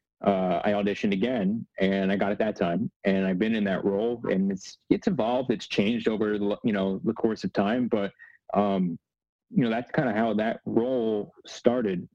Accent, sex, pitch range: American, male, 95-120 Hz